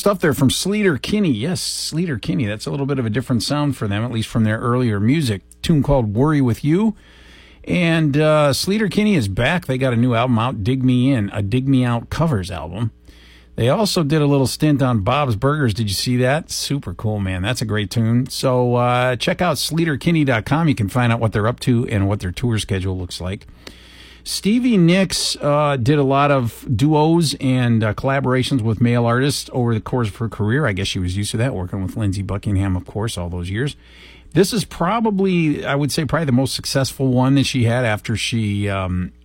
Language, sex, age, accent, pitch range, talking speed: English, male, 50-69, American, 100-140 Hz, 220 wpm